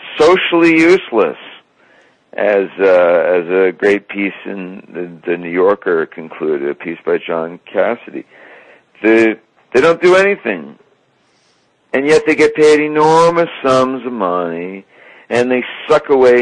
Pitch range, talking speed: 90-120 Hz, 135 wpm